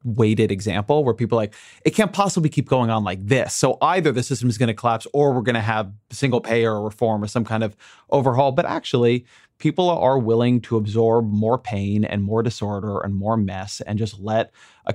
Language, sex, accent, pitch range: English, male, American, 110-140 Hz